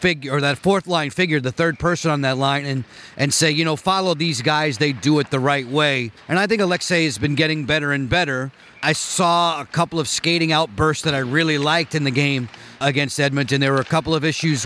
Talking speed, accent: 240 wpm, American